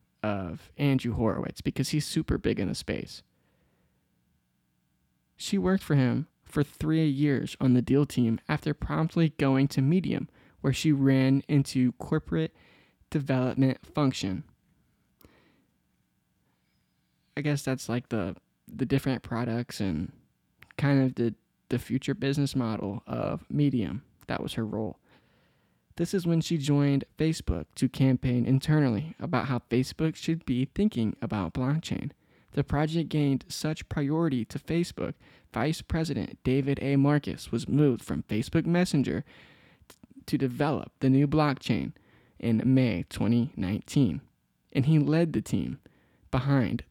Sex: male